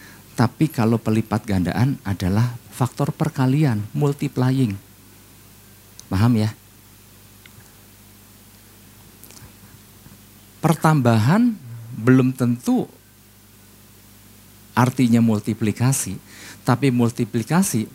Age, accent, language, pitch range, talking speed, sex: 50-69, native, Indonesian, 100-120 Hz, 55 wpm, male